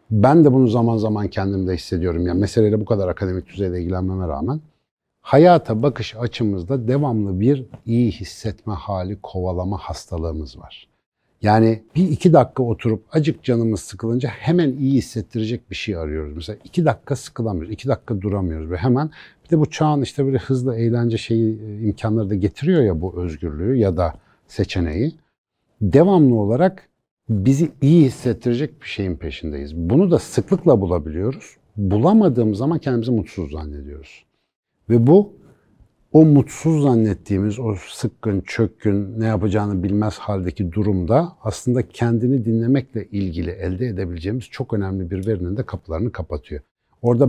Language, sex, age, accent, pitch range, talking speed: Turkish, male, 60-79, native, 95-130 Hz, 140 wpm